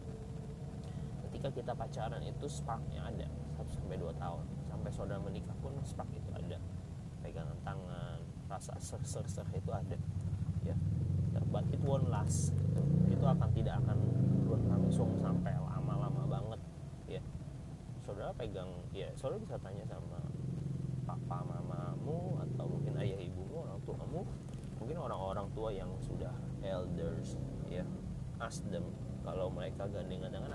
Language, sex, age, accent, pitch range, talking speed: Indonesian, male, 20-39, native, 90-140 Hz, 130 wpm